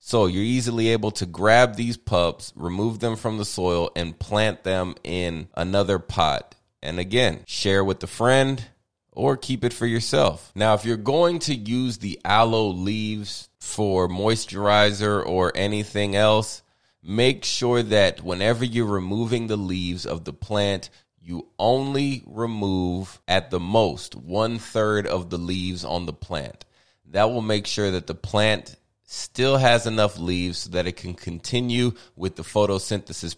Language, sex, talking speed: English, male, 160 wpm